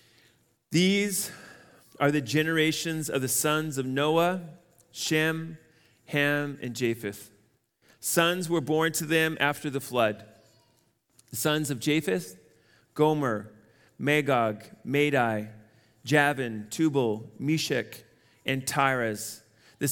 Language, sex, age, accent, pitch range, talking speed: English, male, 30-49, American, 120-155 Hz, 100 wpm